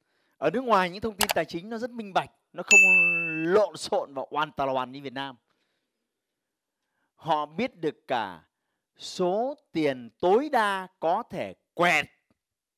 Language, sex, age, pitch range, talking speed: Vietnamese, male, 30-49, 130-180 Hz, 160 wpm